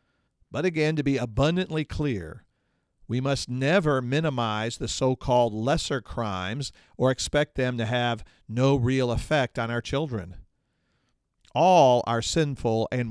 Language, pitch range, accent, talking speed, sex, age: English, 110-145 Hz, American, 135 wpm, male, 50-69